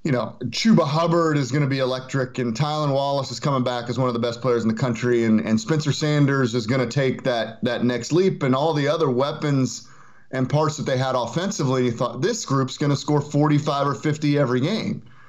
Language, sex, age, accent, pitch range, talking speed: English, male, 30-49, American, 125-160 Hz, 230 wpm